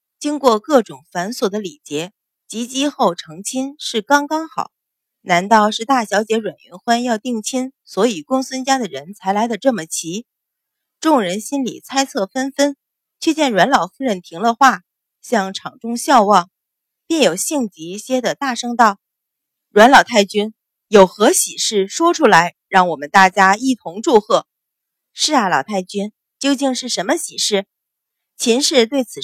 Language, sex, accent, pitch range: Chinese, female, native, 195-260 Hz